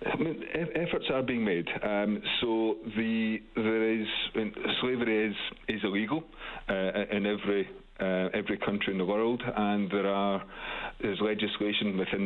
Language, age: English, 50-69